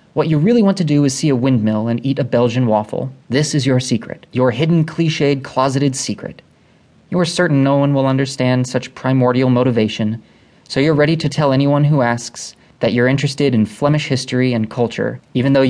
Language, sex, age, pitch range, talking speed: English, male, 20-39, 120-145 Hz, 195 wpm